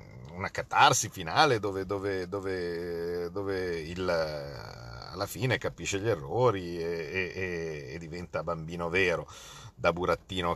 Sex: male